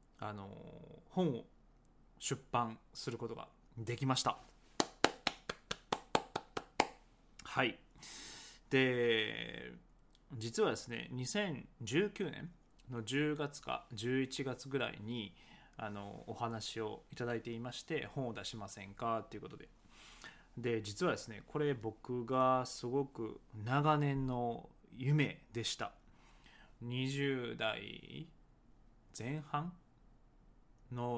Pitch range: 115-145 Hz